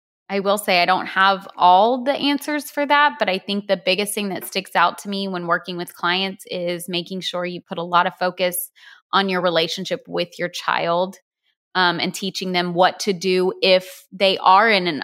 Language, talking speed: English, 210 wpm